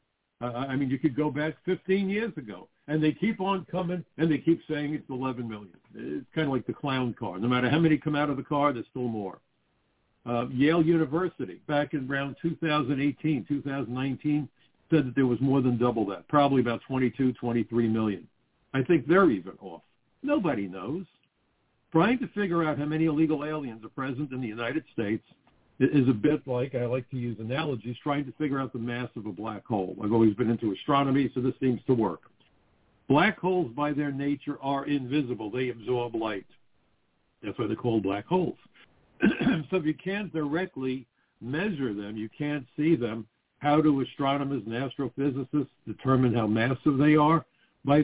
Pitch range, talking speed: 120-150 Hz, 190 wpm